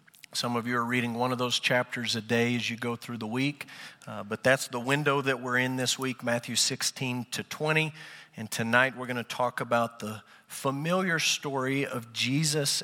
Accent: American